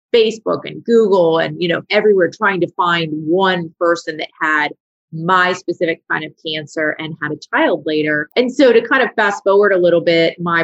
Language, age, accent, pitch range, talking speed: English, 30-49, American, 160-185 Hz, 195 wpm